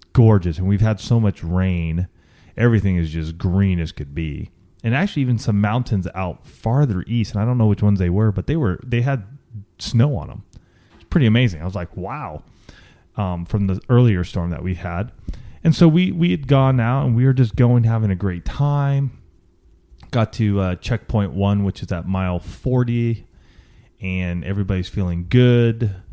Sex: male